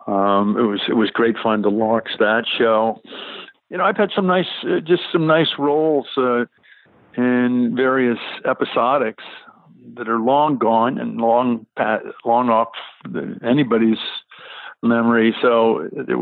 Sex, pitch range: male, 110-125 Hz